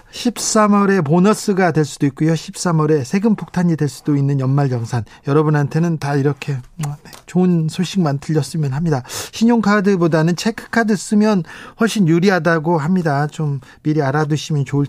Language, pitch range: Korean, 150-195 Hz